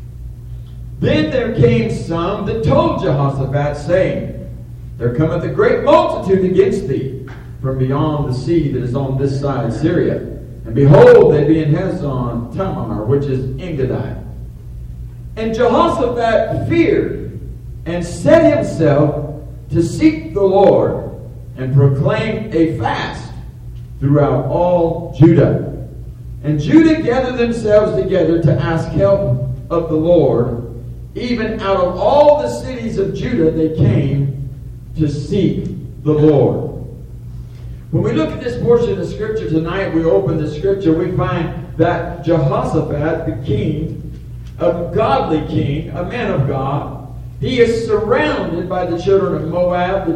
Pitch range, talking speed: 130-175 Hz, 135 wpm